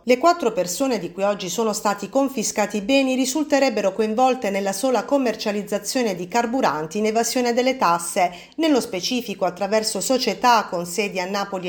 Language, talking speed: Italian, 155 wpm